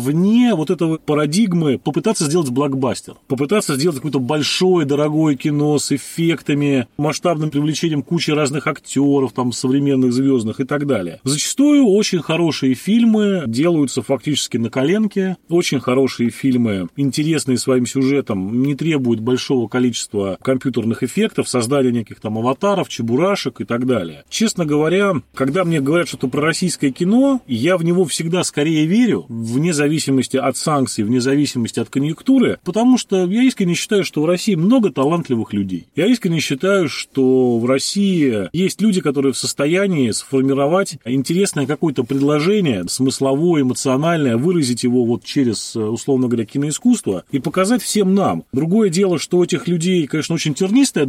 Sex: male